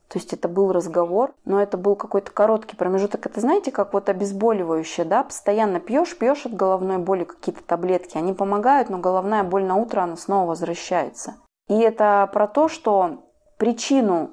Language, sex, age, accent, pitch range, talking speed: Russian, female, 20-39, native, 185-225 Hz, 170 wpm